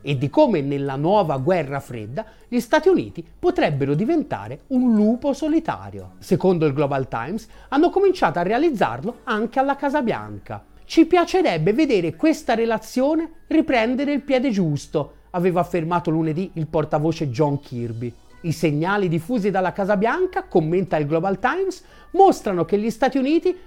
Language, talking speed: Italian, 145 wpm